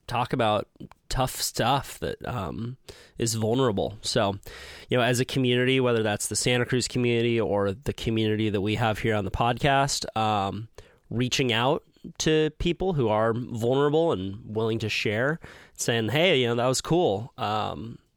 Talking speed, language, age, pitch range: 165 wpm, English, 20-39, 105-130 Hz